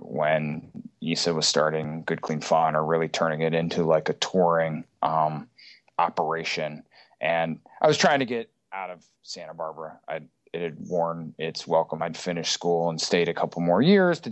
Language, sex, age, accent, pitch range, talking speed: English, male, 20-39, American, 80-95 Hz, 175 wpm